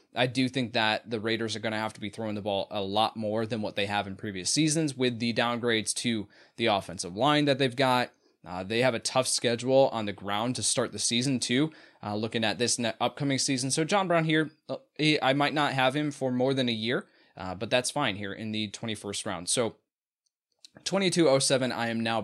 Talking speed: 235 wpm